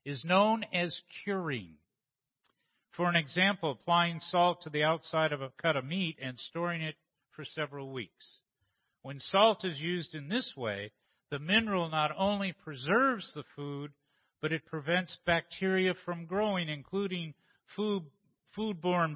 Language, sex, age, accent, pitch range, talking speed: English, male, 50-69, American, 140-180 Hz, 140 wpm